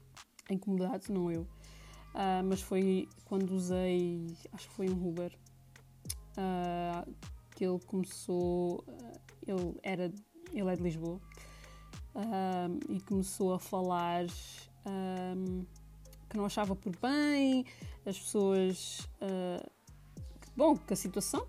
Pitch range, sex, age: 175-225 Hz, female, 20-39